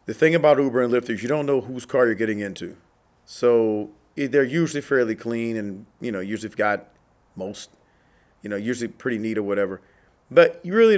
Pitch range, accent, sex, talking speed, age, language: 100-125 Hz, American, male, 195 wpm, 40-59, English